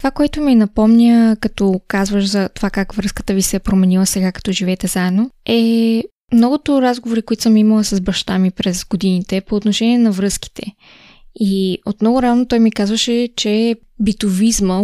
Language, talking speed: Bulgarian, 170 wpm